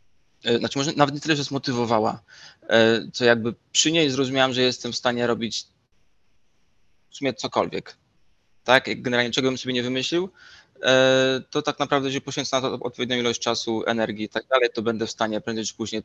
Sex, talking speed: male, 180 wpm